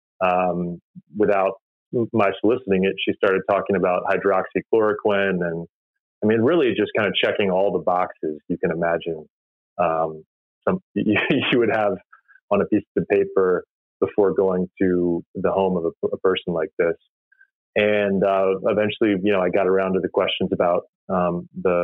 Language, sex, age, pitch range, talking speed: English, male, 30-49, 90-105 Hz, 165 wpm